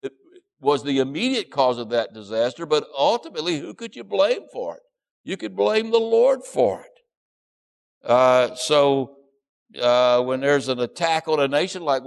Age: 60-79